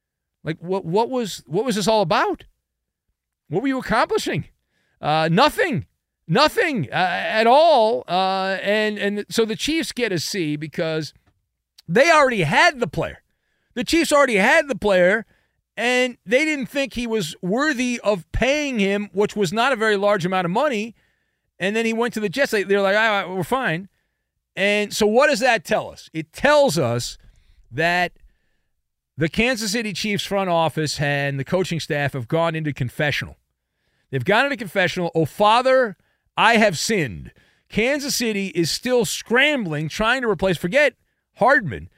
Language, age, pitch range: English, 40-59, 175-245 Hz